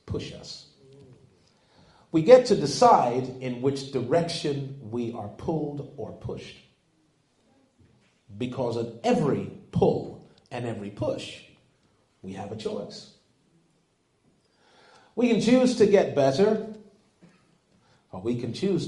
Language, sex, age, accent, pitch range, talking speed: English, male, 40-59, American, 120-175 Hz, 110 wpm